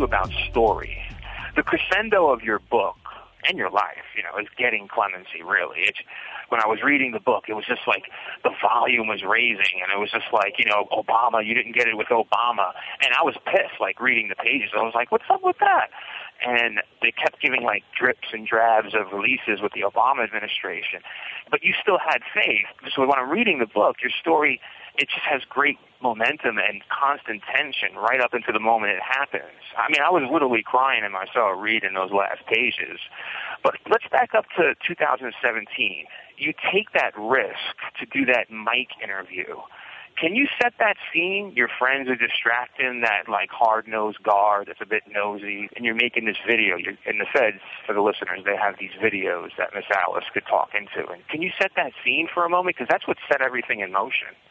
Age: 40-59